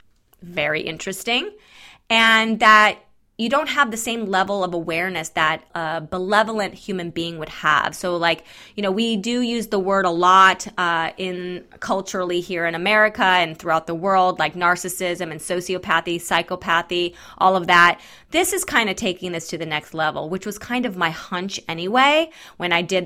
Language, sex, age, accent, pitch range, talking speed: English, female, 20-39, American, 170-215 Hz, 175 wpm